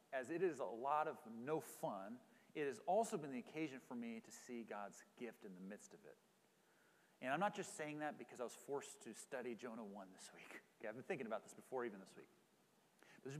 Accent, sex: American, male